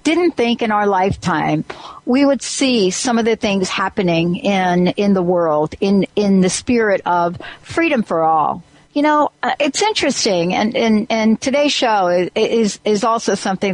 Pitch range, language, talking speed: 180-245 Hz, English, 165 wpm